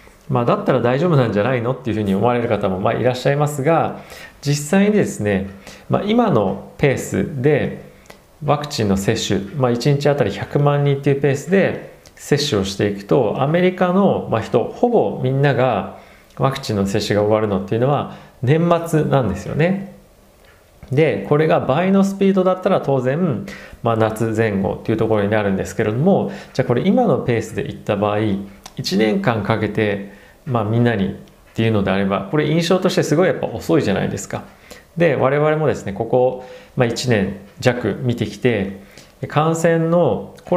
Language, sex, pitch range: Japanese, male, 105-150 Hz